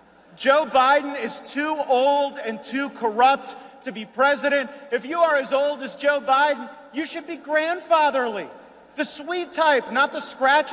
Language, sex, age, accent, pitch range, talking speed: English, male, 40-59, American, 245-285 Hz, 160 wpm